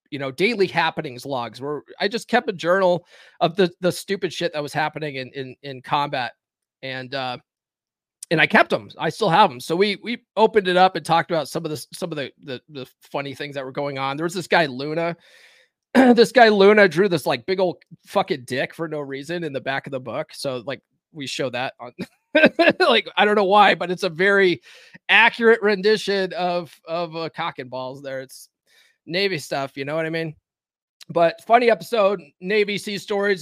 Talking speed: 210 wpm